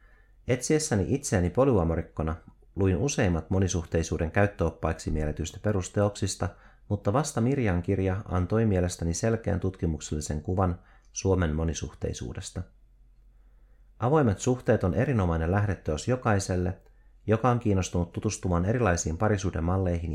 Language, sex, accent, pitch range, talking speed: Finnish, male, native, 90-115 Hz, 100 wpm